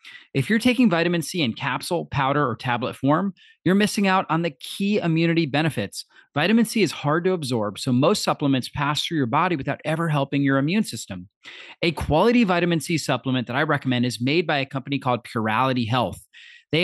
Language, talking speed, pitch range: English, 195 wpm, 130-185 Hz